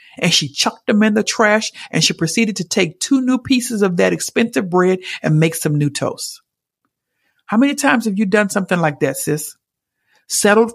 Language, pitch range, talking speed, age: English, 150-205 Hz, 195 wpm, 50-69